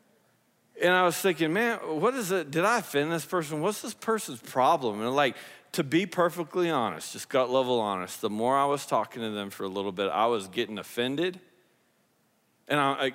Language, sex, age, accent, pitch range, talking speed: English, male, 40-59, American, 120-170 Hz, 195 wpm